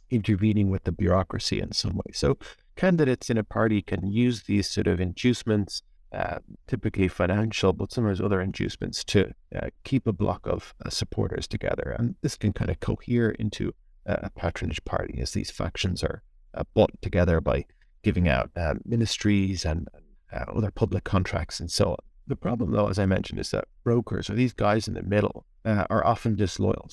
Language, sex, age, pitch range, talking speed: English, male, 40-59, 95-110 Hz, 185 wpm